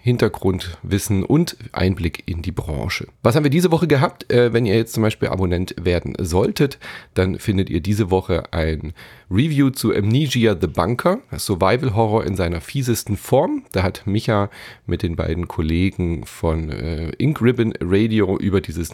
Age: 40-59